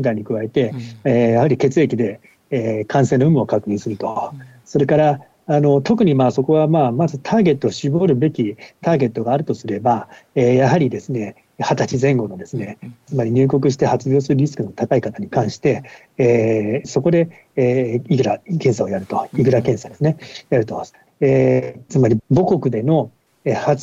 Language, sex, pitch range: Japanese, male, 120-165 Hz